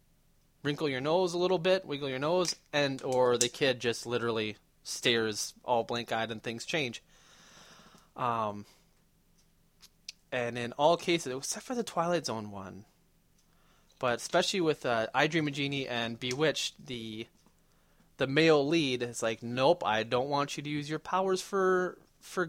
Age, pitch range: 20-39, 115-155 Hz